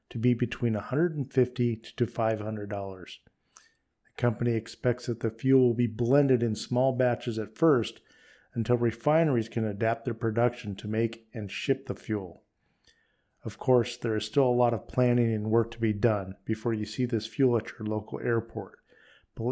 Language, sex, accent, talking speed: English, male, American, 170 wpm